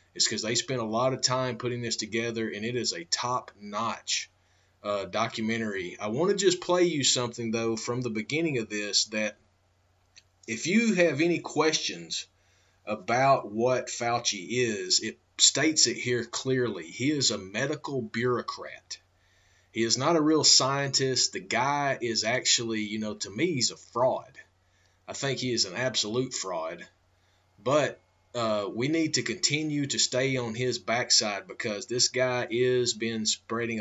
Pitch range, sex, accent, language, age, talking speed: 105-130 Hz, male, American, English, 30-49, 160 wpm